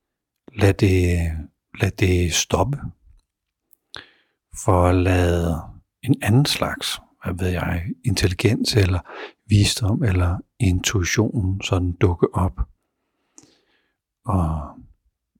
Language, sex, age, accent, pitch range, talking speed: Danish, male, 60-79, native, 85-100 Hz, 90 wpm